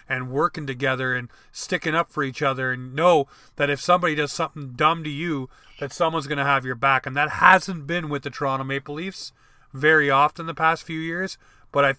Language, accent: English, American